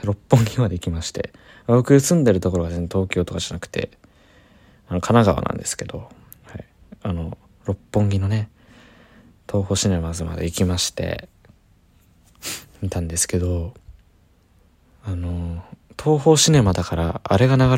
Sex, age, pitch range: male, 20-39, 90-115 Hz